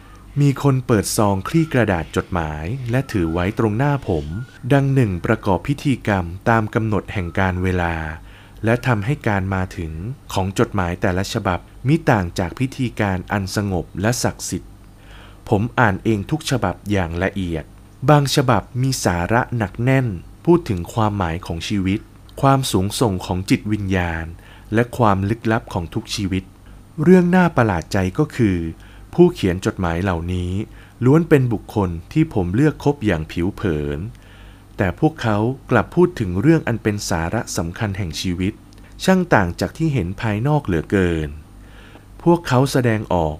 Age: 20-39